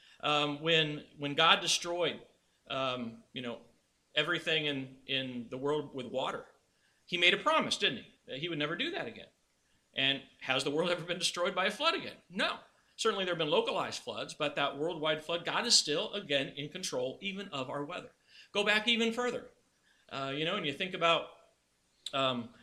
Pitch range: 135-175 Hz